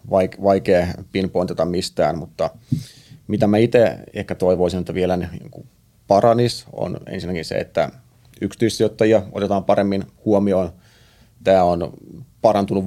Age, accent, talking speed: 30-49, native, 105 wpm